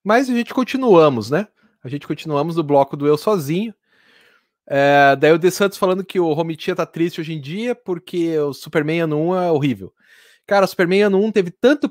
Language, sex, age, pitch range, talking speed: Portuguese, male, 30-49, 155-210 Hz, 205 wpm